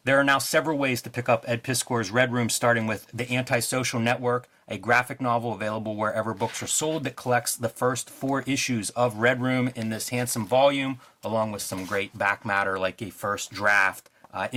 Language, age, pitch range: English, 30-49, 115-135 Hz